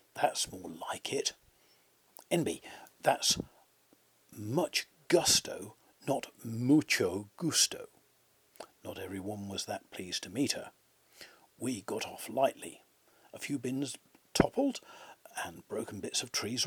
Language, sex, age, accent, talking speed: English, male, 50-69, British, 115 wpm